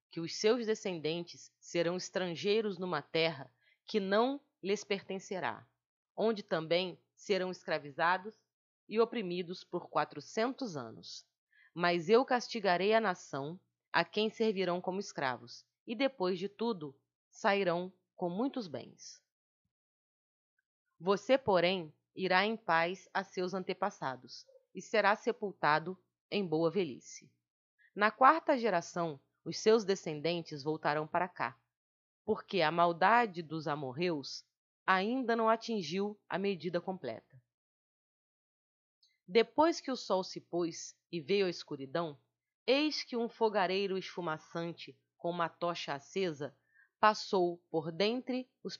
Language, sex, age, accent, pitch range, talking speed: Portuguese, female, 30-49, Brazilian, 165-215 Hz, 120 wpm